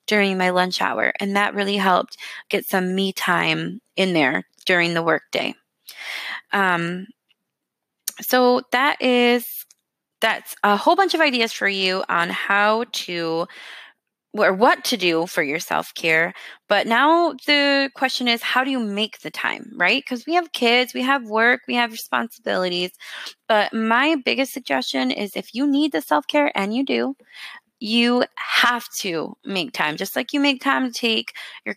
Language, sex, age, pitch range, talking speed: English, female, 20-39, 180-250 Hz, 165 wpm